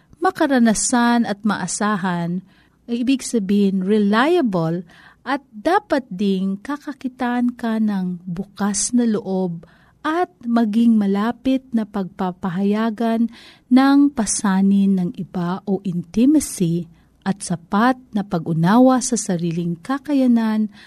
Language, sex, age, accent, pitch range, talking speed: Filipino, female, 40-59, native, 185-260 Hz, 100 wpm